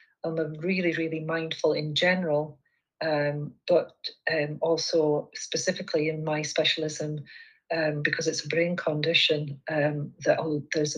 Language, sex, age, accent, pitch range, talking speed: English, female, 40-59, British, 150-170 Hz, 125 wpm